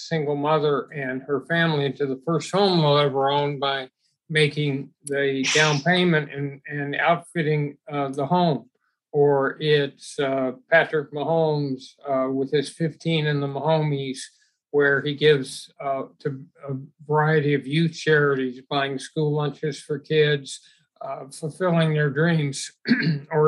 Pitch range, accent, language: 140-160 Hz, American, English